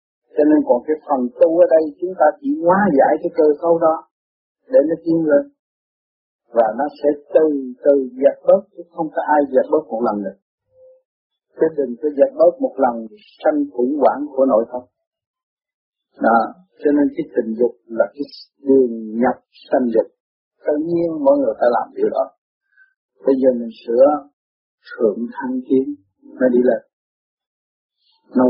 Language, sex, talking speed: Vietnamese, male, 170 wpm